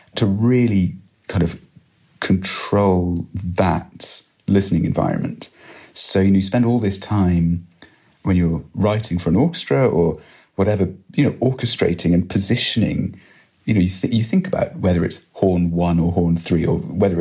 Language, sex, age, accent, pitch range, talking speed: English, male, 30-49, British, 90-115 Hz, 155 wpm